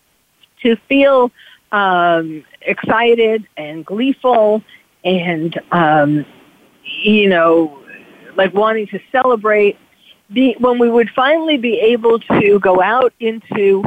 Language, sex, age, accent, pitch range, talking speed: English, female, 50-69, American, 195-255 Hz, 105 wpm